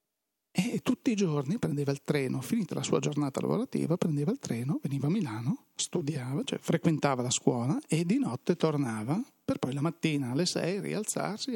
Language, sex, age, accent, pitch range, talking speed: Italian, male, 40-59, native, 140-165 Hz, 175 wpm